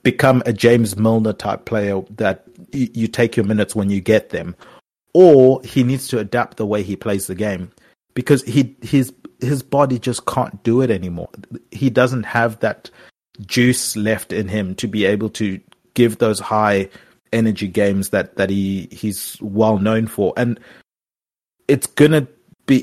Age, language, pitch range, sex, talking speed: 30-49, English, 100-125 Hz, male, 170 wpm